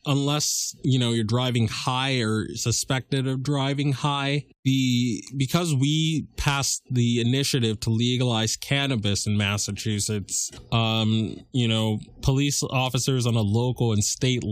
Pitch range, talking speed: 110-130 Hz, 130 wpm